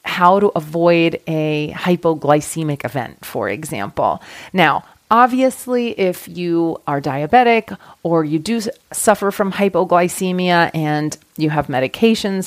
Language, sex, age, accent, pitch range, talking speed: English, female, 30-49, American, 160-225 Hz, 115 wpm